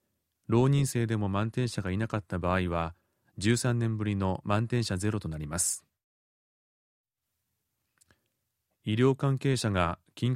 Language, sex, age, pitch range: Japanese, male, 30-49, 90-115 Hz